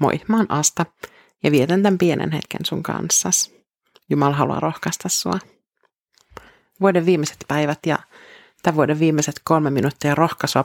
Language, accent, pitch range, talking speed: Finnish, native, 150-175 Hz, 140 wpm